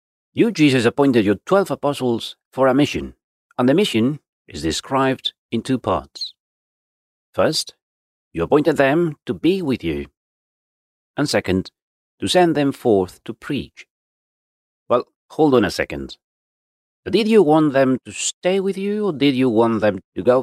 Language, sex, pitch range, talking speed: English, male, 85-140 Hz, 155 wpm